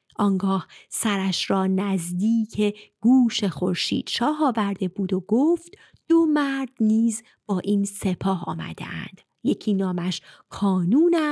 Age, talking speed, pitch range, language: 30-49, 105 wpm, 190-255 Hz, Persian